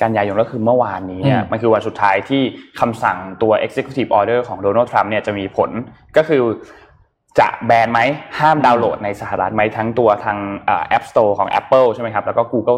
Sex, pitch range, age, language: male, 100-125 Hz, 20-39, Thai